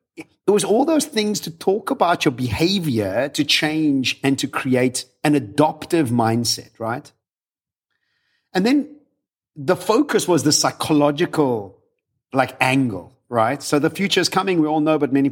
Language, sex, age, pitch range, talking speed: English, male, 50-69, 135-195 Hz, 155 wpm